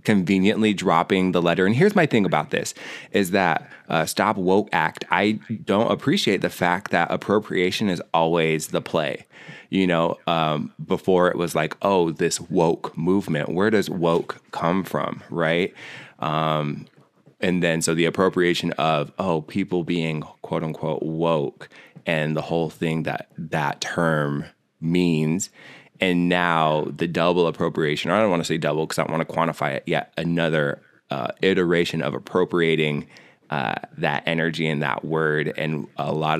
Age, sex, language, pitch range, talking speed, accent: 20-39, male, English, 75-90 Hz, 165 wpm, American